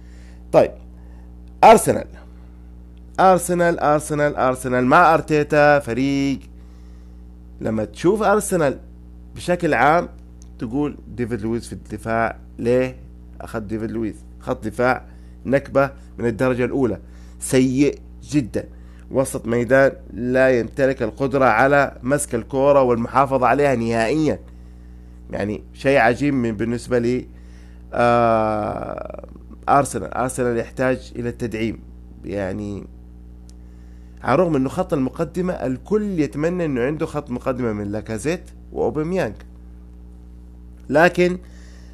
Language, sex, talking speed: Arabic, male, 100 wpm